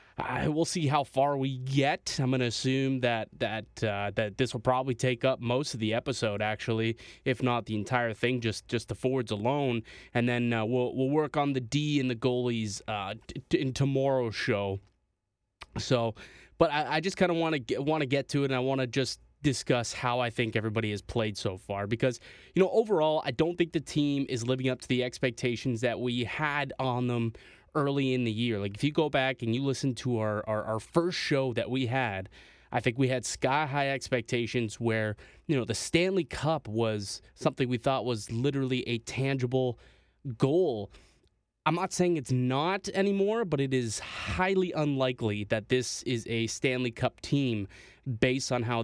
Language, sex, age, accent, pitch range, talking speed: English, male, 20-39, American, 115-140 Hz, 200 wpm